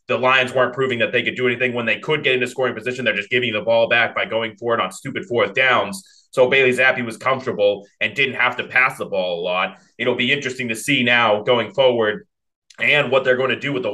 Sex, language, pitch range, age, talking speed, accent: male, English, 120-130 Hz, 30-49, 260 wpm, American